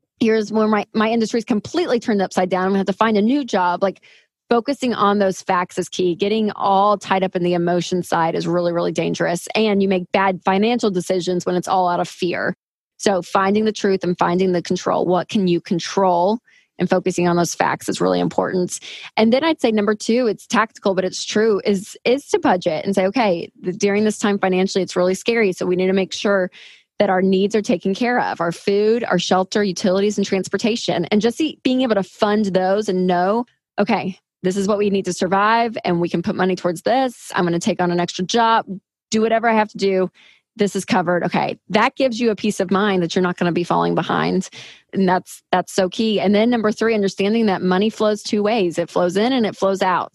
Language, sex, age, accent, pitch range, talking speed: English, female, 20-39, American, 185-225 Hz, 230 wpm